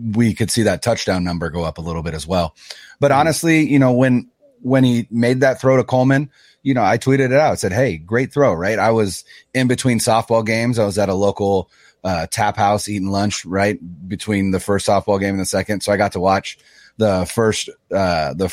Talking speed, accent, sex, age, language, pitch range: 230 wpm, American, male, 30-49, English, 95-135 Hz